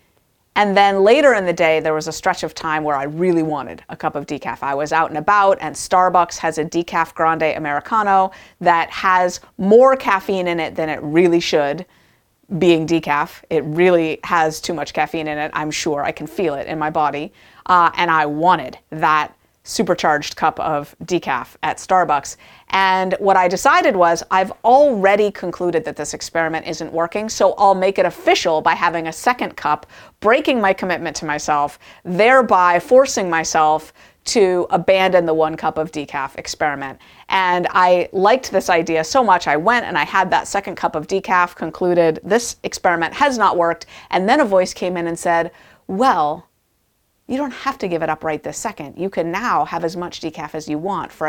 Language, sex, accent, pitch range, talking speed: English, female, American, 155-190 Hz, 190 wpm